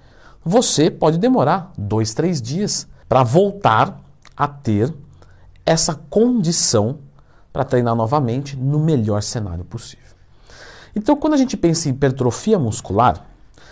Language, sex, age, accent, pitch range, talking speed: Portuguese, male, 50-69, Brazilian, 110-170 Hz, 120 wpm